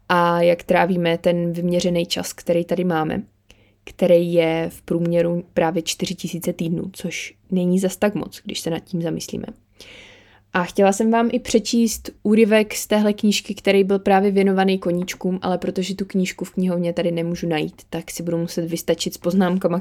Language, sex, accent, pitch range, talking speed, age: Czech, female, native, 170-205 Hz, 175 wpm, 20-39